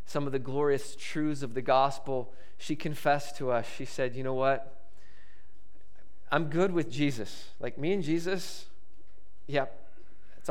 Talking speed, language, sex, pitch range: 155 wpm, English, male, 125-170 Hz